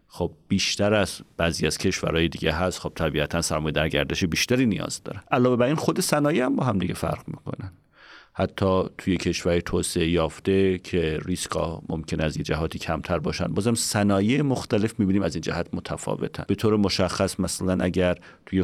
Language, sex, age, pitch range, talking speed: Persian, male, 40-59, 90-115 Hz, 175 wpm